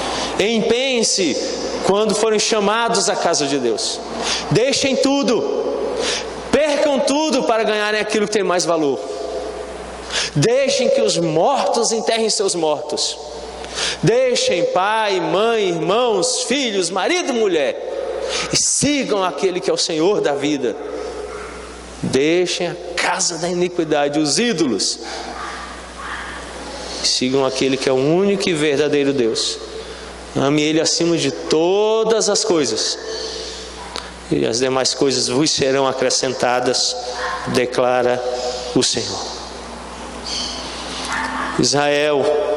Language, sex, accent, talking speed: English, male, Brazilian, 110 wpm